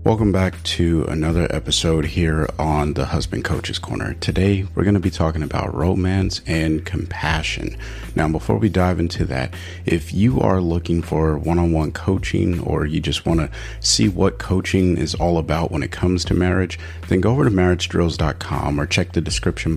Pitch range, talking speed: 80-95 Hz, 180 wpm